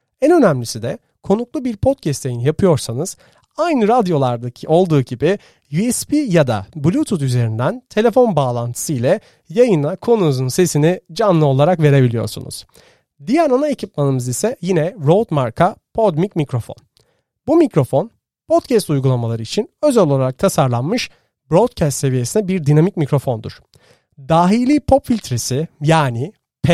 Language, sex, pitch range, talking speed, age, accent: Turkish, male, 130-190 Hz, 115 wpm, 40-59, native